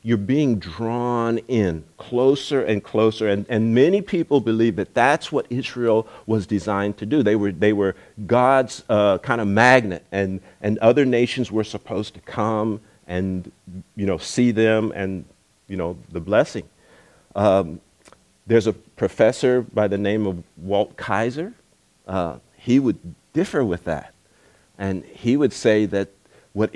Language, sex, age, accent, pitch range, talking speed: English, male, 50-69, American, 95-115 Hz, 155 wpm